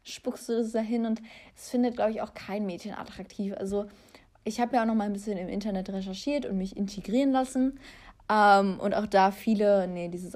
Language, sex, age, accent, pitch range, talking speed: German, female, 20-39, German, 195-240 Hz, 210 wpm